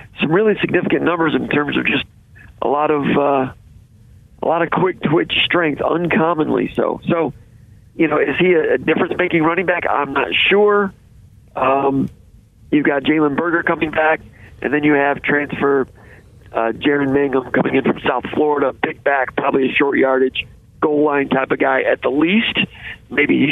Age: 50-69